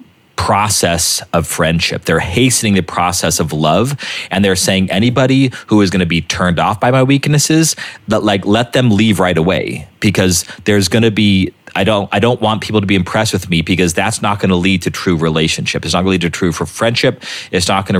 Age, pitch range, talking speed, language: 30-49, 85-105 Hz, 225 wpm, English